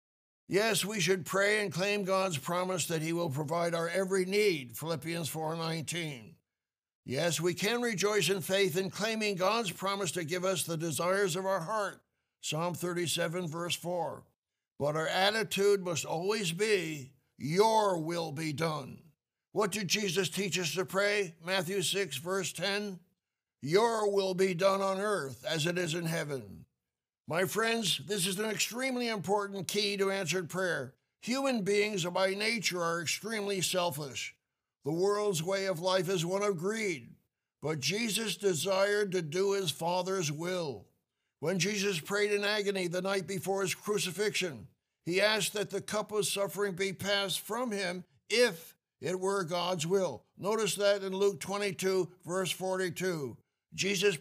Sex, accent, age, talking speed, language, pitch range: male, American, 60-79, 155 wpm, English, 170-200 Hz